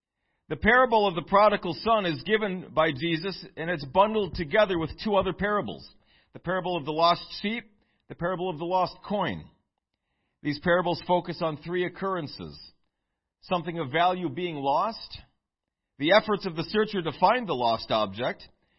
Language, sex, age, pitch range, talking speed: English, male, 40-59, 140-200 Hz, 165 wpm